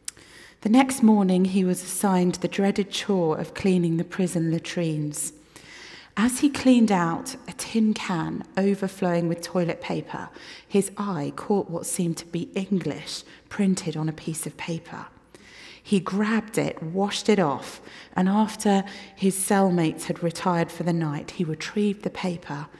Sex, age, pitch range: female, 30-49, 170-205 Hz